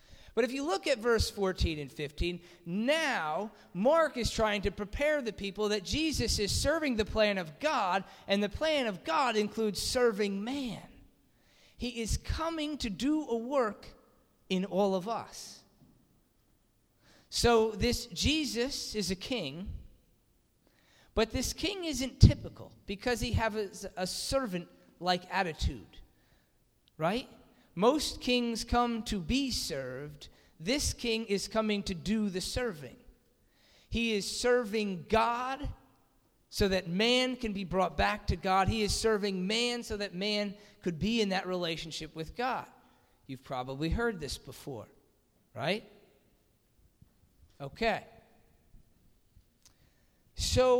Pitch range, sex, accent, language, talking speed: 190-245 Hz, male, American, English, 130 wpm